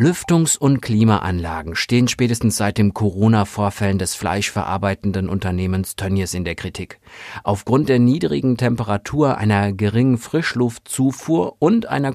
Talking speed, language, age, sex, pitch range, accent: 120 wpm, German, 50-69, male, 100-130 Hz, German